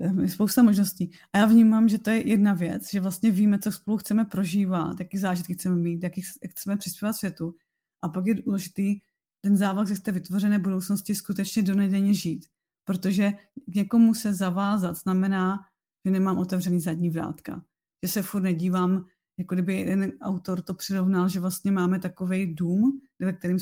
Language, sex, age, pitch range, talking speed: Czech, female, 30-49, 185-205 Hz, 170 wpm